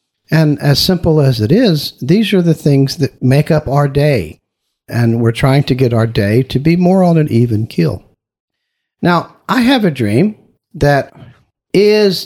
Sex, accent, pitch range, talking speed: male, American, 110-175 Hz, 175 wpm